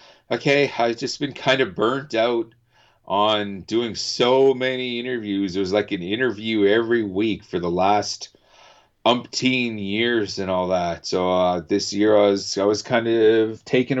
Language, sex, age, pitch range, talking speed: English, male, 40-59, 105-135 Hz, 165 wpm